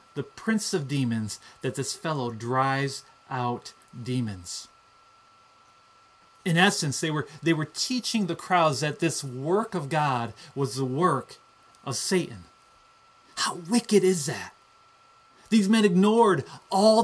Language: English